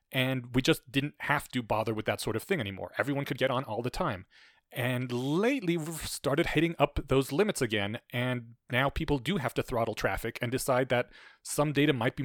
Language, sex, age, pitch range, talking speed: English, male, 30-49, 120-145 Hz, 215 wpm